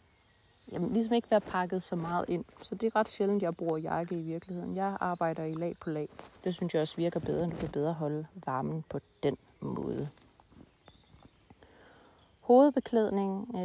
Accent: native